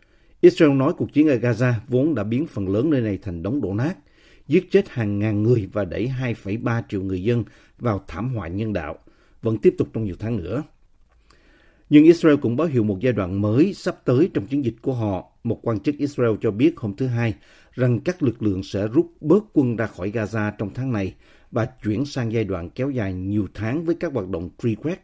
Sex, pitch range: male, 100-130 Hz